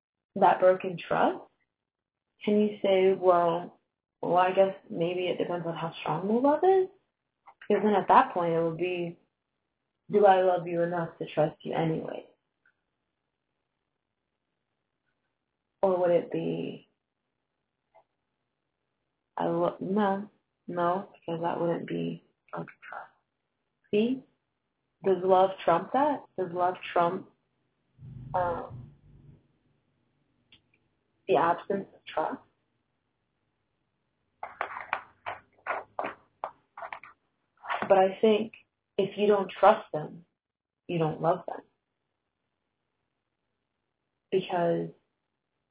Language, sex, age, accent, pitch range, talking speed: English, female, 20-39, American, 165-195 Hz, 100 wpm